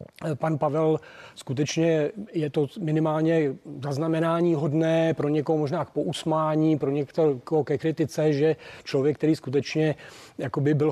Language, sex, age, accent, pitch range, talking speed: Czech, male, 40-59, native, 145-160 Hz, 120 wpm